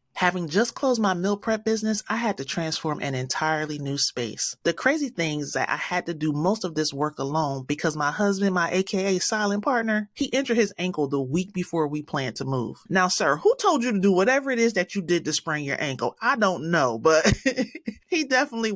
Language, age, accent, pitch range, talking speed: English, 30-49, American, 145-195 Hz, 225 wpm